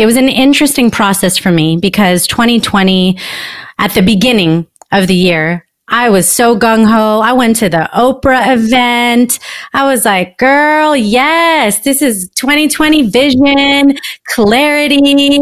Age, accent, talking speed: 30-49, American, 140 wpm